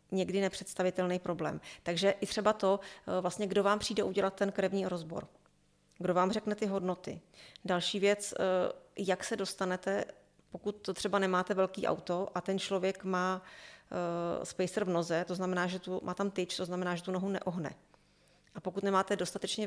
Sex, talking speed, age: female, 165 wpm, 30-49